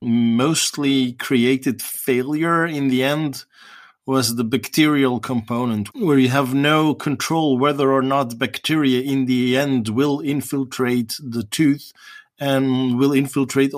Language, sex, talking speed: English, male, 125 wpm